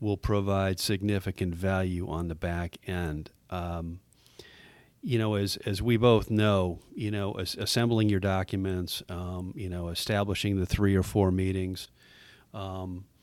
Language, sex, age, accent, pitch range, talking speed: English, male, 40-59, American, 90-105 Hz, 140 wpm